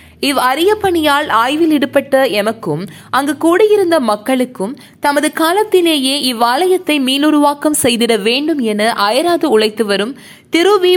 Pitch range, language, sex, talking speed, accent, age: 225-320 Hz, Tamil, female, 120 wpm, native, 20-39